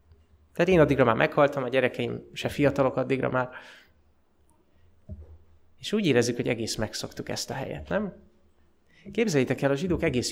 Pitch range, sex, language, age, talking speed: 120-150 Hz, male, Hungarian, 20-39, 150 wpm